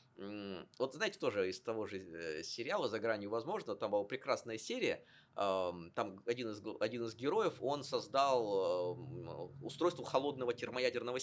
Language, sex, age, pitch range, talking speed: Russian, male, 20-39, 120-180 Hz, 130 wpm